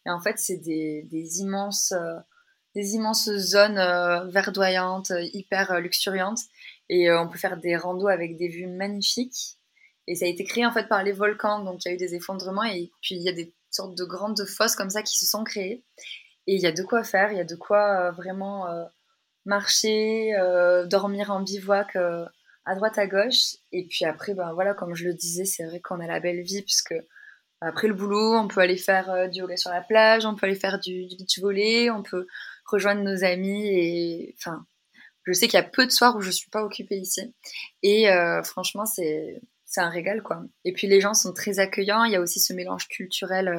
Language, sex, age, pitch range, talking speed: French, female, 20-39, 180-210 Hz, 225 wpm